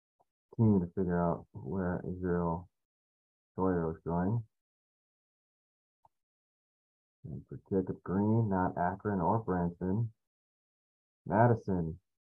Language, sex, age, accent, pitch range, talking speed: English, male, 30-49, American, 80-105 Hz, 90 wpm